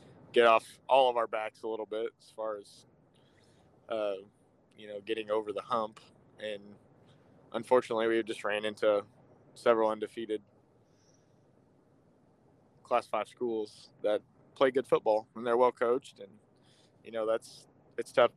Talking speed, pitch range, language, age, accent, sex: 145 wpm, 110-130 Hz, English, 20-39, American, male